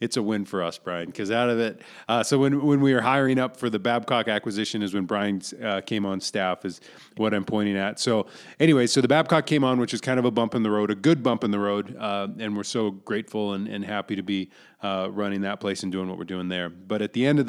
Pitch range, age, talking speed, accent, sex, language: 100-130 Hz, 30-49, 280 wpm, American, male, English